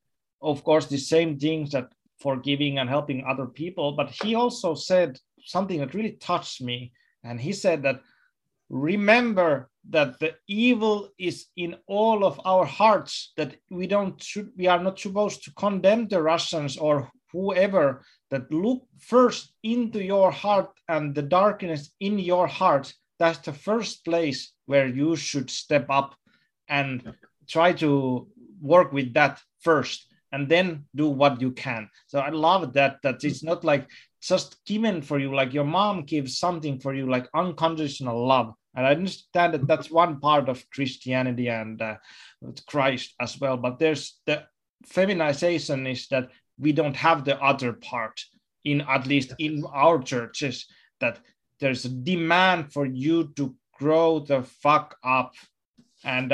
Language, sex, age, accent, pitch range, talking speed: Finnish, male, 30-49, native, 135-180 Hz, 160 wpm